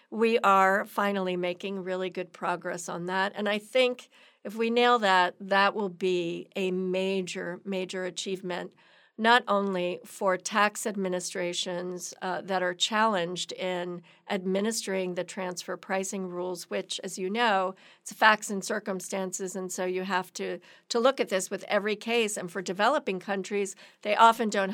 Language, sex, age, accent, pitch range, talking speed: English, female, 50-69, American, 185-220 Hz, 160 wpm